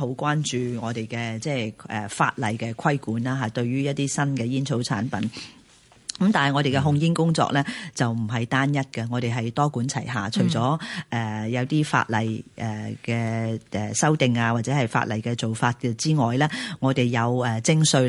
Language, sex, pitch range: Chinese, female, 115-145 Hz